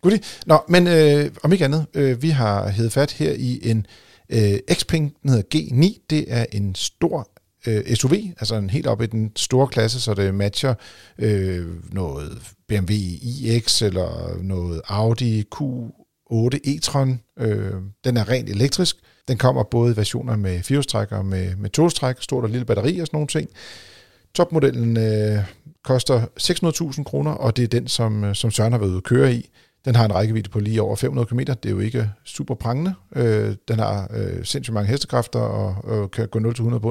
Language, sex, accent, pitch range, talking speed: Danish, male, native, 105-140 Hz, 185 wpm